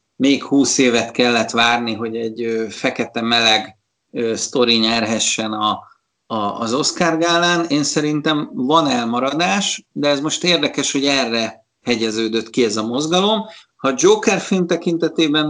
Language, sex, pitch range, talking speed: Hungarian, male, 120-150 Hz, 130 wpm